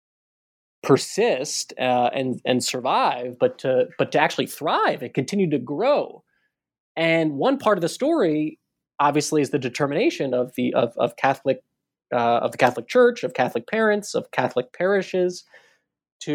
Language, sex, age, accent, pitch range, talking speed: English, male, 20-39, American, 125-170 Hz, 155 wpm